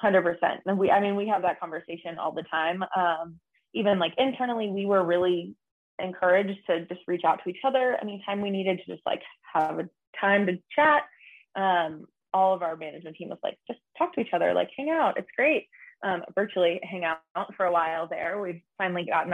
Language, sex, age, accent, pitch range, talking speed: English, female, 20-39, American, 170-205 Hz, 215 wpm